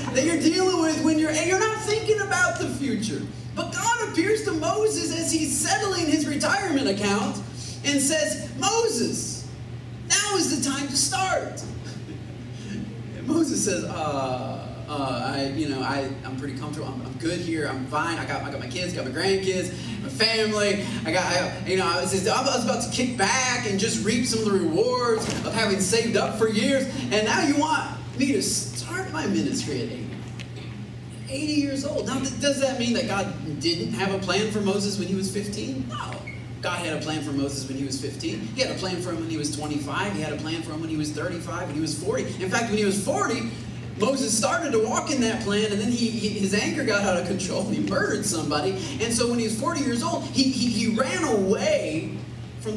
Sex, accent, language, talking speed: male, American, English, 220 wpm